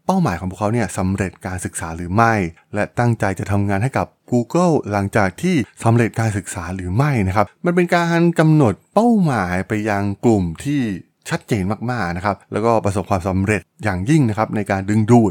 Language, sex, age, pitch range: Thai, male, 20-39, 95-125 Hz